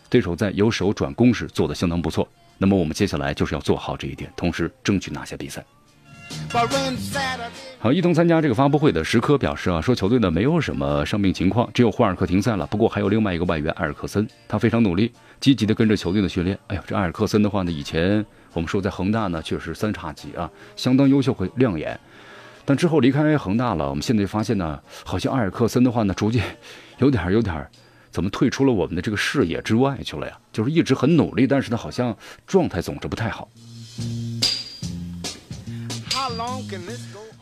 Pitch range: 90-120 Hz